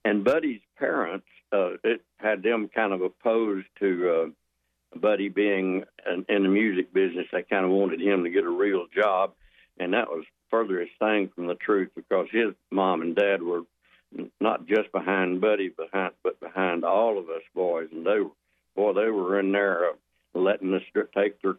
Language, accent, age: English, American, 60-79